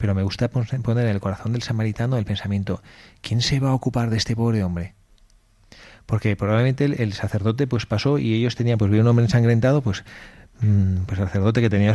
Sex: male